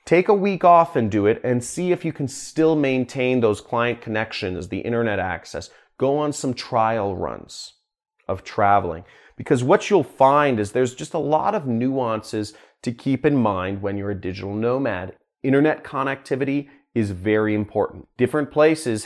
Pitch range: 105-135 Hz